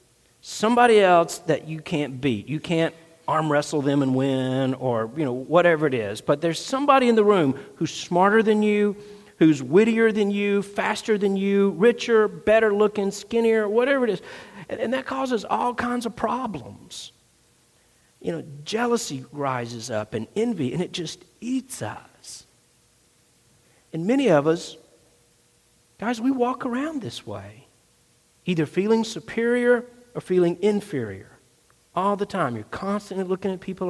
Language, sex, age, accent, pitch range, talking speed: English, male, 50-69, American, 135-215 Hz, 155 wpm